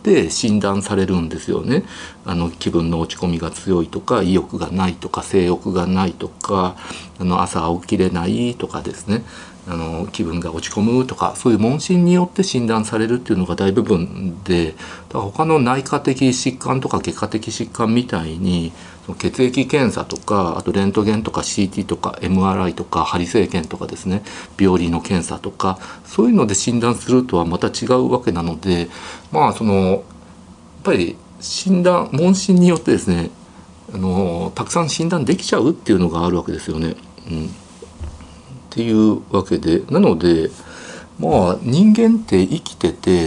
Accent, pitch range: native, 85-120 Hz